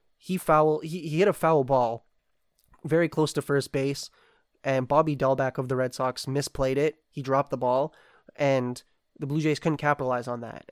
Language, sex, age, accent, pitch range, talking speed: English, male, 20-39, American, 130-150 Hz, 190 wpm